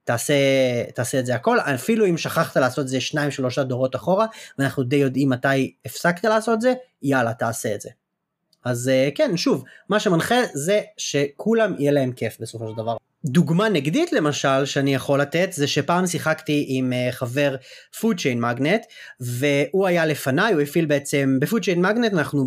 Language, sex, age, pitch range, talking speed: Hebrew, male, 30-49, 135-210 Hz, 175 wpm